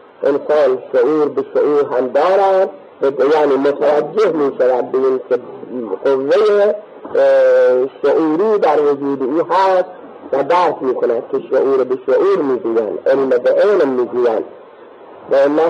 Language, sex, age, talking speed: Persian, male, 50-69, 100 wpm